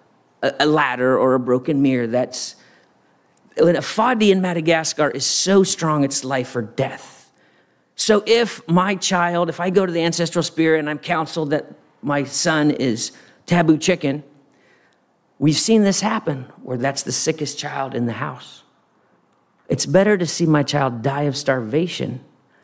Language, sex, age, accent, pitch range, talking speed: English, male, 40-59, American, 135-180 Hz, 155 wpm